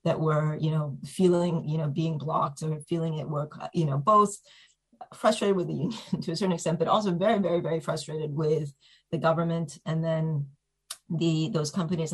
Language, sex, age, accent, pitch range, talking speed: English, female, 30-49, American, 150-165 Hz, 190 wpm